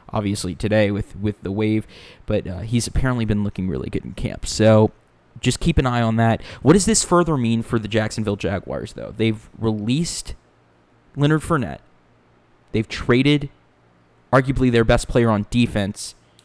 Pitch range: 105-130 Hz